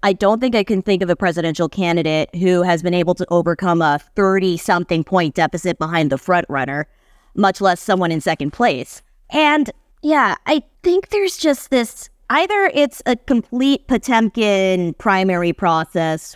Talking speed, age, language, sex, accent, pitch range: 155 wpm, 20-39, English, female, American, 165-225 Hz